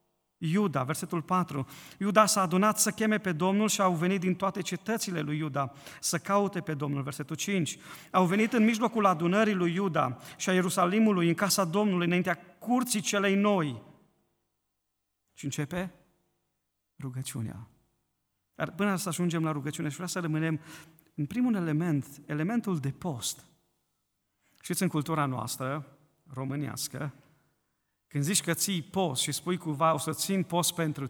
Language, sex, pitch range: Romanian, male, 130-185 Hz